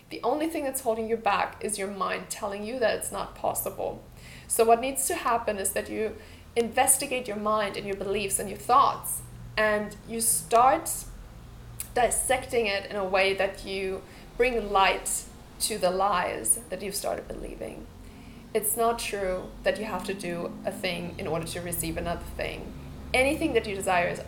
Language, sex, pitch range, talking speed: English, female, 195-230 Hz, 180 wpm